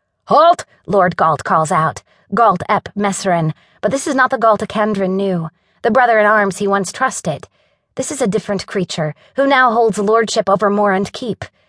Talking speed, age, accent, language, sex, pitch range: 175 wpm, 30-49, American, English, female, 175-225 Hz